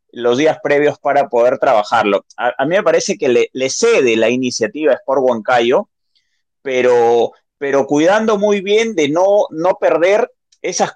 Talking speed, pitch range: 165 wpm, 135-200 Hz